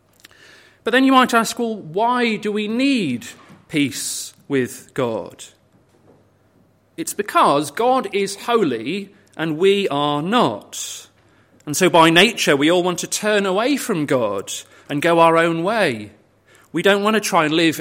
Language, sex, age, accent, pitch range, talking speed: English, male, 40-59, British, 155-210 Hz, 155 wpm